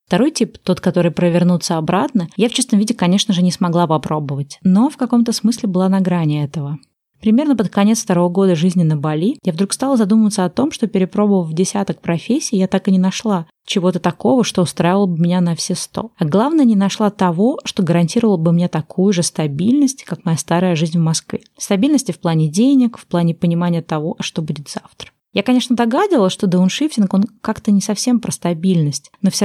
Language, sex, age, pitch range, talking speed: Russian, female, 20-39, 165-215 Hz, 200 wpm